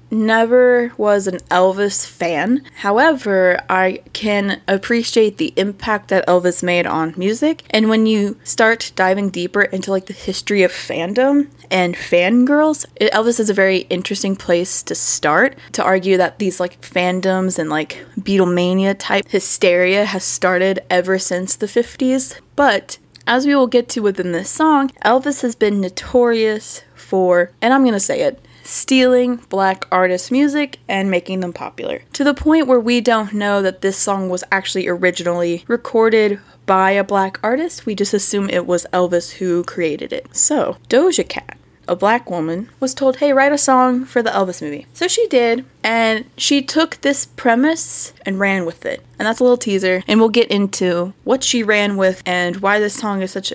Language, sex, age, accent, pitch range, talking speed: English, female, 20-39, American, 185-245 Hz, 175 wpm